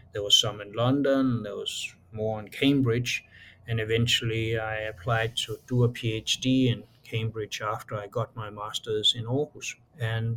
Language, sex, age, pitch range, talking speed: Portuguese, male, 60-79, 110-125 Hz, 160 wpm